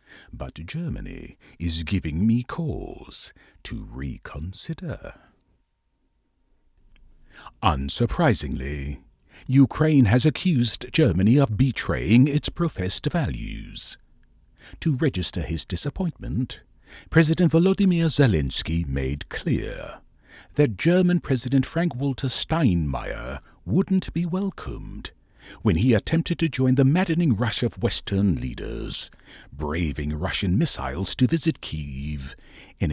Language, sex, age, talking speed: English, male, 60-79, 95 wpm